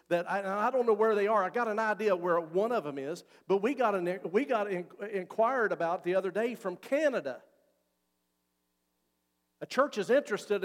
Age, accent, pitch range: 50-69, American, 140-225 Hz